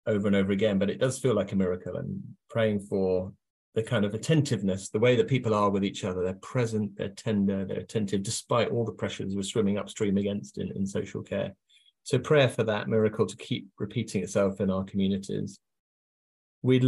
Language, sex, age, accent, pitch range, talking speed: English, male, 30-49, British, 95-110 Hz, 205 wpm